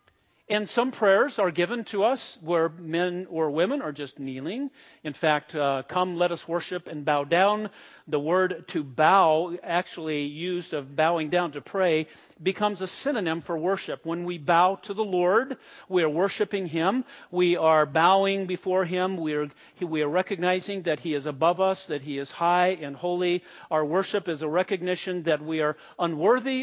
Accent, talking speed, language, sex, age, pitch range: American, 180 wpm, English, male, 50-69, 150-190 Hz